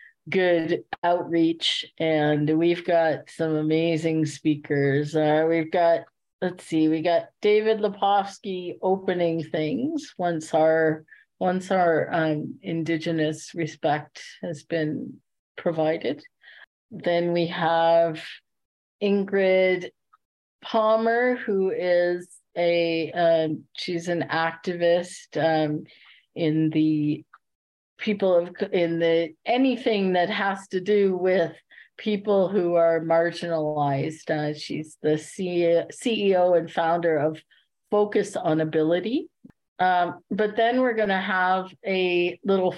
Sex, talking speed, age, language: female, 105 wpm, 40-59, English